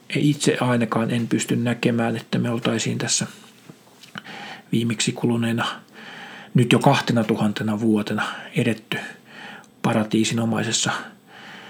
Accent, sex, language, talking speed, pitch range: native, male, Finnish, 90 wpm, 115-155 Hz